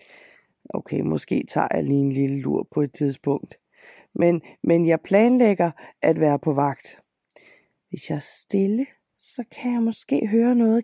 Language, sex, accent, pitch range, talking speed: Danish, female, native, 150-200 Hz, 160 wpm